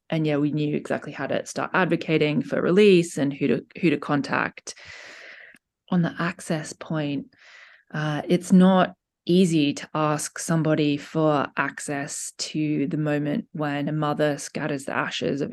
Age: 20-39